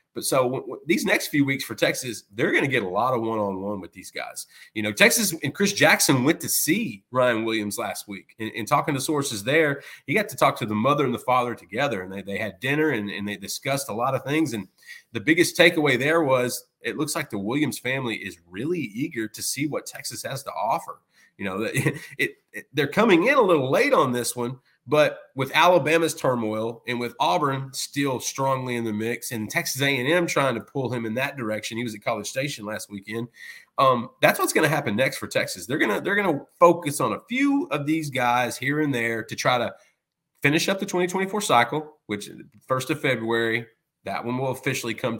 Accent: American